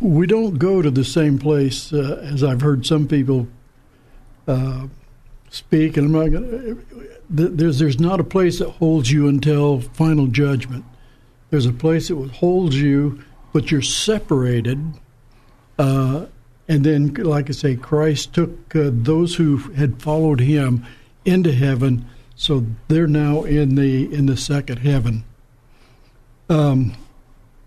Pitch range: 125-155 Hz